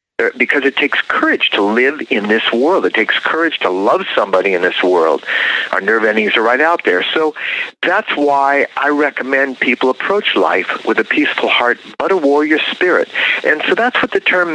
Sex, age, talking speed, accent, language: male, 50-69, 195 wpm, American, English